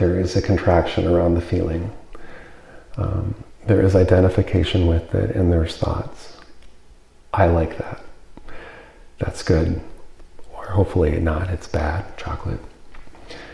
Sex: male